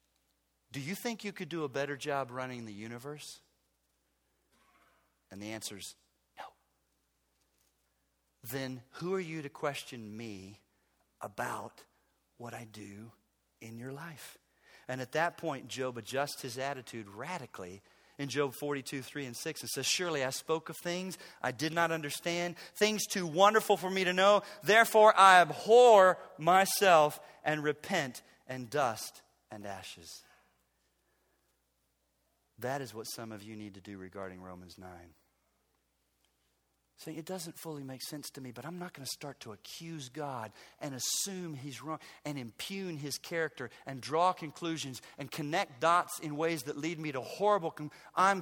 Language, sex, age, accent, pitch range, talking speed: English, male, 40-59, American, 110-170 Hz, 155 wpm